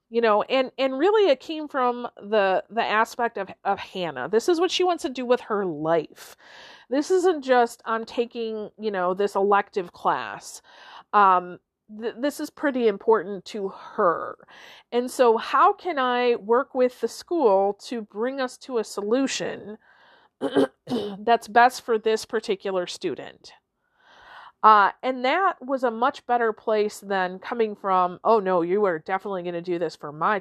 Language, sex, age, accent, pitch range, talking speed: English, female, 40-59, American, 215-310 Hz, 170 wpm